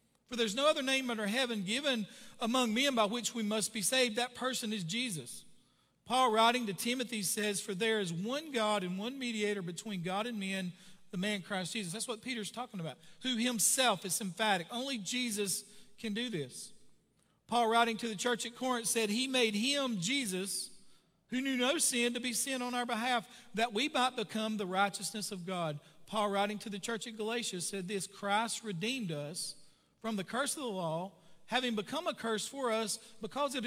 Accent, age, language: American, 40-59, English